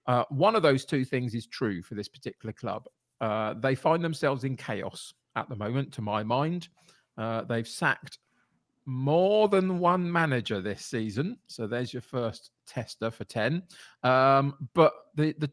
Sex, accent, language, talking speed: male, British, English, 170 wpm